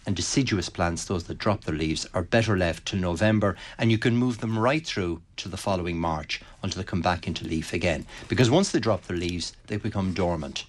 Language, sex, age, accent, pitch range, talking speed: English, male, 60-79, Irish, 85-110 Hz, 225 wpm